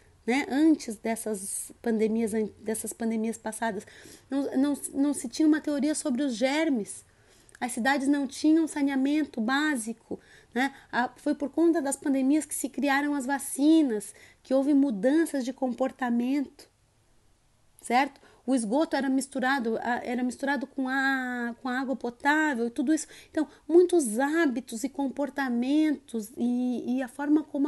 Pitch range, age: 240-295 Hz, 30-49